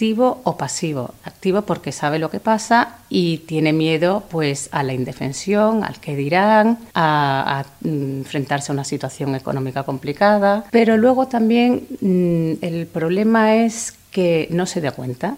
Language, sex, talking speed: Spanish, female, 155 wpm